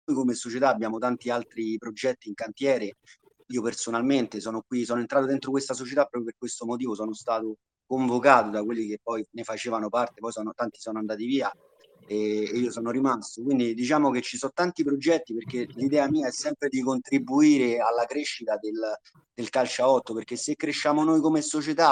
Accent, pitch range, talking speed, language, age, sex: native, 115-140 Hz, 190 wpm, Italian, 30-49, male